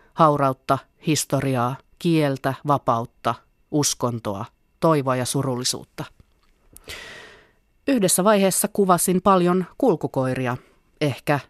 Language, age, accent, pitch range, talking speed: Finnish, 30-49, native, 135-165 Hz, 75 wpm